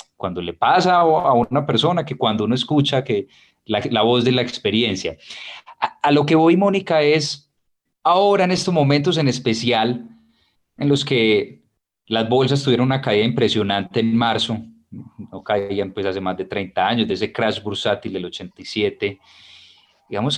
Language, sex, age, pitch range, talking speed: Spanish, male, 30-49, 105-140 Hz, 165 wpm